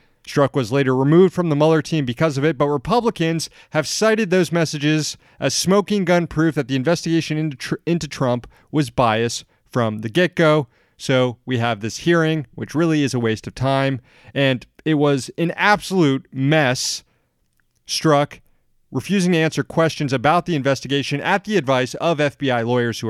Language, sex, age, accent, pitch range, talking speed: English, male, 30-49, American, 125-165 Hz, 170 wpm